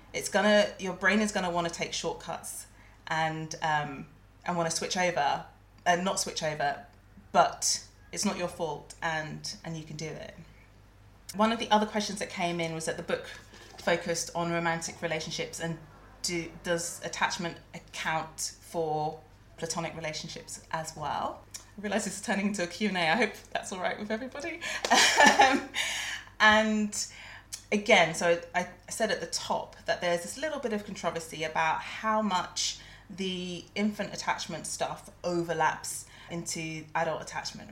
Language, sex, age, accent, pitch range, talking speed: English, female, 30-49, British, 160-210 Hz, 165 wpm